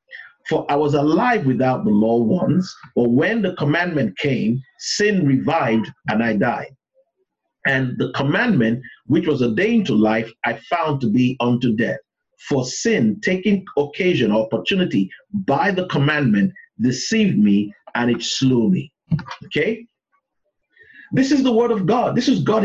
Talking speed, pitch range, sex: 150 wpm, 135-215 Hz, male